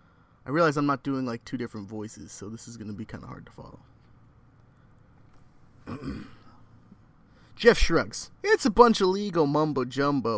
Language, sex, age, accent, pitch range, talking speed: English, male, 30-49, American, 120-160 Hz, 160 wpm